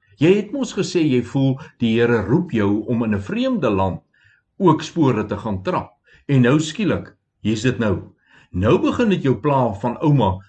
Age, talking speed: 60-79, 190 wpm